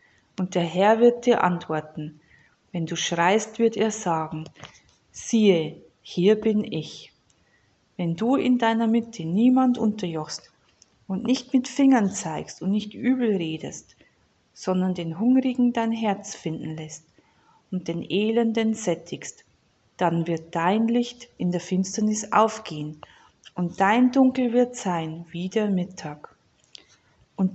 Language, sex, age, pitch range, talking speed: German, female, 40-59, 170-230 Hz, 130 wpm